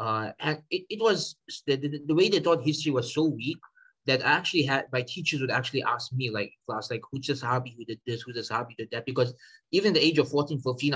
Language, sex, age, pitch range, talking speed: English, male, 20-39, 120-150 Hz, 265 wpm